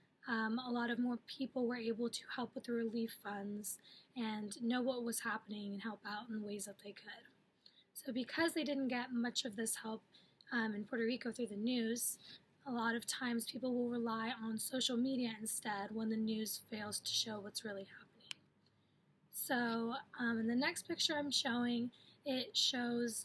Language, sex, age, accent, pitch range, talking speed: English, female, 10-29, American, 220-255 Hz, 190 wpm